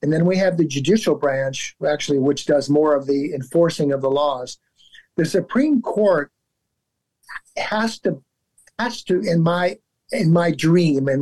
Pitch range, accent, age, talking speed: 145-190 Hz, American, 50-69, 160 wpm